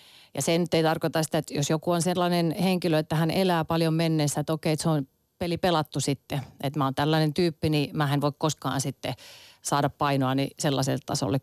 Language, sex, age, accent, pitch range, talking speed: Finnish, female, 30-49, native, 140-160 Hz, 205 wpm